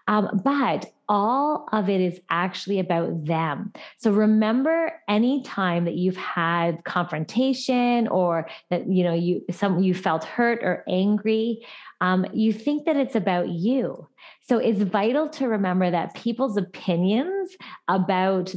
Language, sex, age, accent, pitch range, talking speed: English, female, 20-39, American, 180-225 Hz, 140 wpm